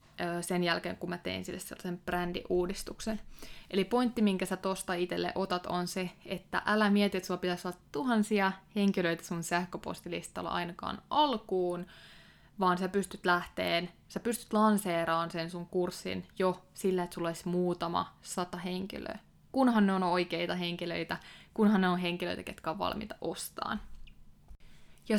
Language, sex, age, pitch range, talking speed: Finnish, female, 20-39, 175-205 Hz, 150 wpm